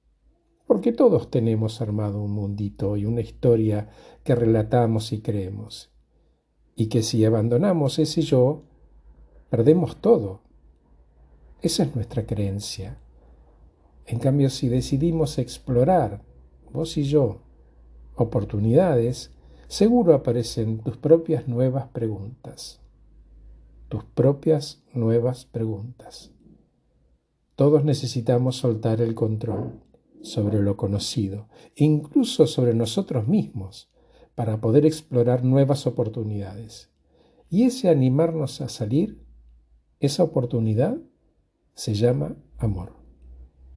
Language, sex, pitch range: Spanish, male, 100-140 Hz